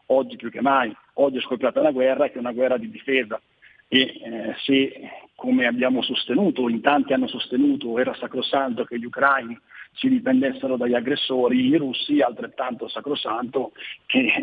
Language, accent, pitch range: Italian, native, 120-140 Hz